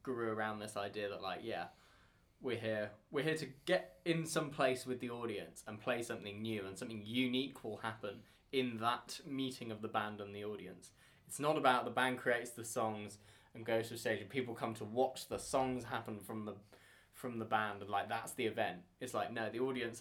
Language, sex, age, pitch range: English, male, 20-39, 105-130 Hz